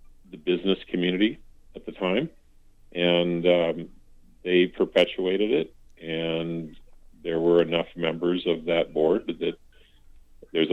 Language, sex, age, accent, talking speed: English, male, 50-69, American, 115 wpm